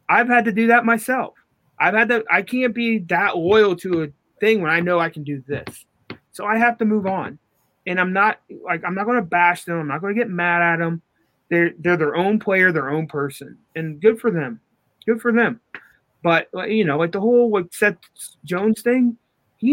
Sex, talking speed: male, 230 wpm